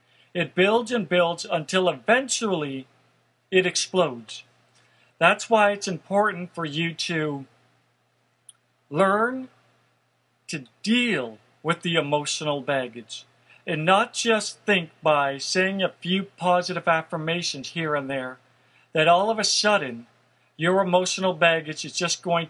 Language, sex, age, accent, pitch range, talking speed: English, male, 50-69, American, 155-200 Hz, 125 wpm